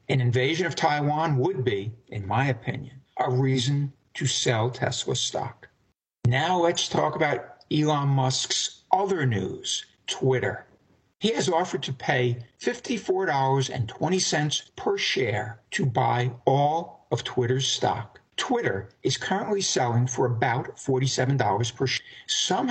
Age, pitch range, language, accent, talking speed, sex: 60-79, 125-155 Hz, English, American, 125 wpm, male